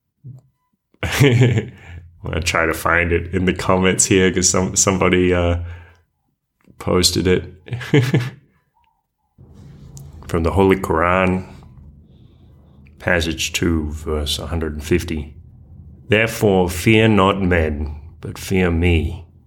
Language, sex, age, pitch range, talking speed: English, male, 30-49, 80-95 Hz, 90 wpm